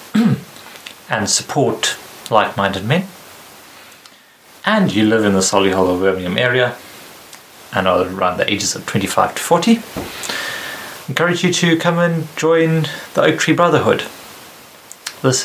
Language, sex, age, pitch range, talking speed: English, male, 30-49, 105-145 Hz, 130 wpm